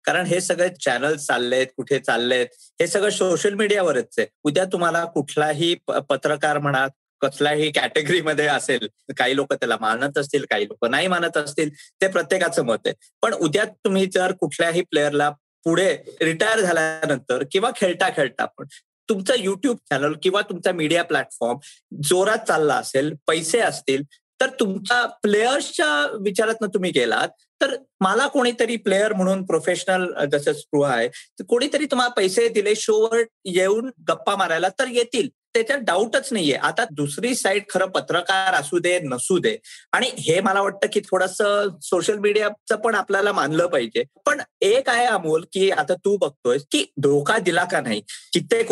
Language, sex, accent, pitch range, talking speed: Marathi, male, native, 160-235 Hz, 150 wpm